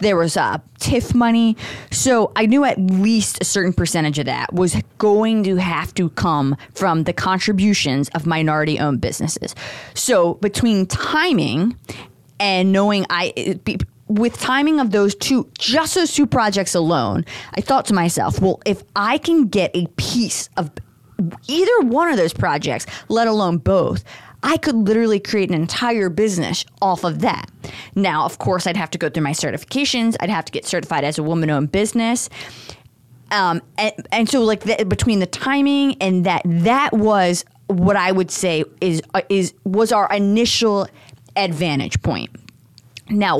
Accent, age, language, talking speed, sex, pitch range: American, 20-39, English, 170 wpm, female, 160-220 Hz